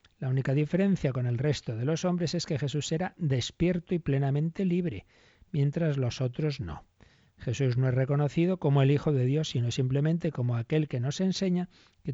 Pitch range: 120-145 Hz